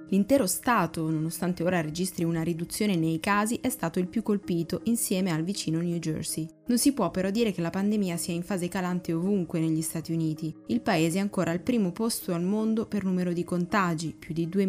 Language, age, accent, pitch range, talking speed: Italian, 20-39, native, 165-200 Hz, 210 wpm